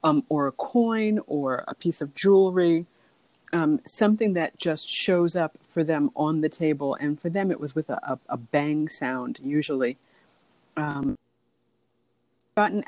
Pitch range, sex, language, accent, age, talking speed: 140-175 Hz, female, English, American, 40-59, 160 wpm